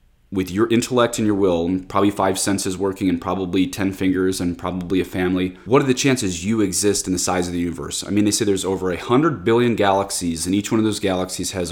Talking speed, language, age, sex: 245 wpm, English, 30-49, male